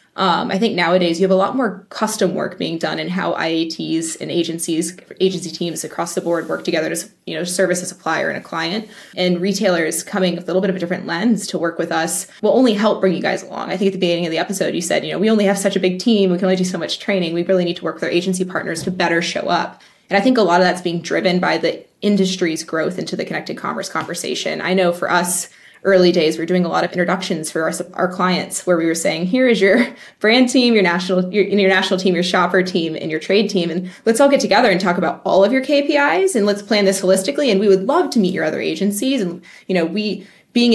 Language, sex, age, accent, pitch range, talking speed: English, female, 20-39, American, 175-205 Hz, 260 wpm